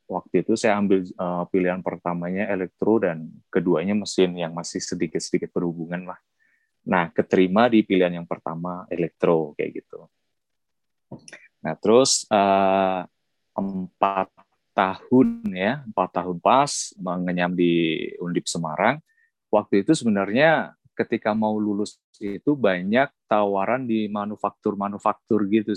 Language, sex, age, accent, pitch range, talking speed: Indonesian, male, 20-39, native, 90-110 Hz, 115 wpm